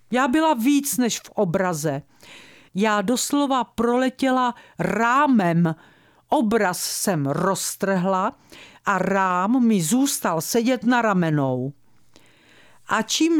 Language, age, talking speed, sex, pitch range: Czech, 50-69, 100 wpm, female, 170-250 Hz